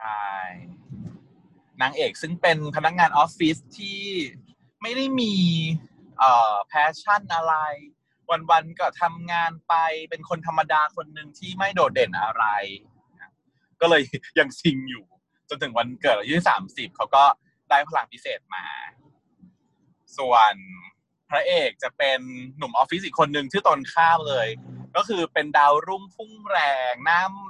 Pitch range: 145-190 Hz